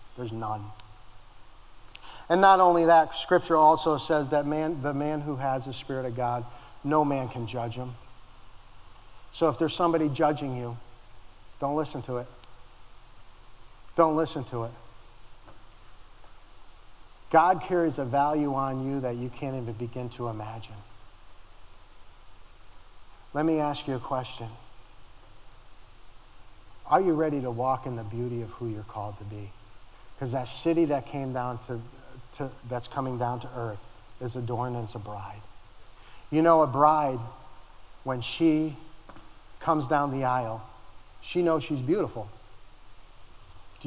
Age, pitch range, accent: 50-69, 115-165 Hz, American